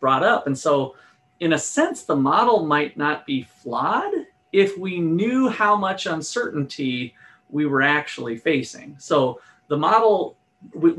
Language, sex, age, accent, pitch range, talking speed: English, male, 40-59, American, 135-195 Hz, 145 wpm